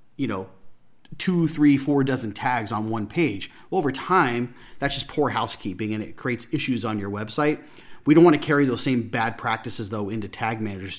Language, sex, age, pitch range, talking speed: English, male, 40-59, 110-135 Hz, 195 wpm